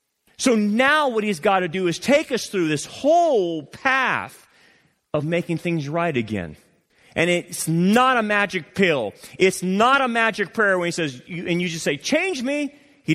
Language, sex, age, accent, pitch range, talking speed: English, male, 30-49, American, 150-205 Hz, 185 wpm